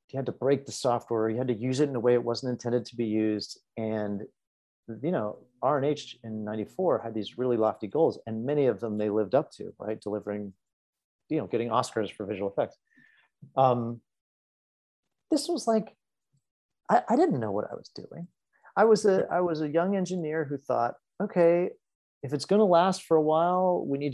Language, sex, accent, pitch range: English, male, American, 115-170 Hz